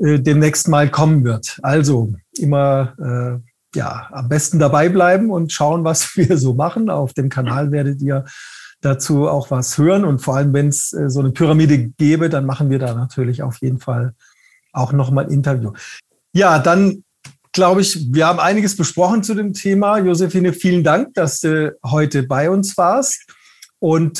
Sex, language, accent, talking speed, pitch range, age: male, German, German, 175 wpm, 140-180 Hz, 40-59